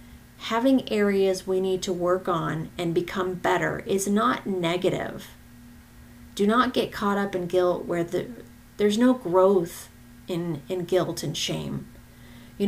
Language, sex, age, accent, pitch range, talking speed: English, female, 30-49, American, 180-210 Hz, 145 wpm